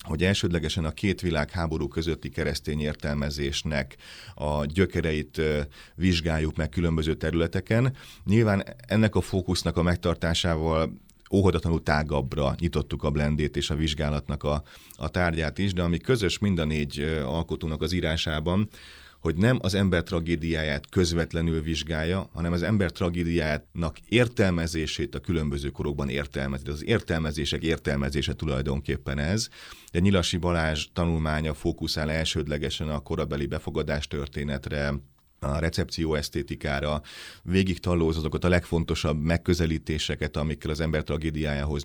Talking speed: 120 wpm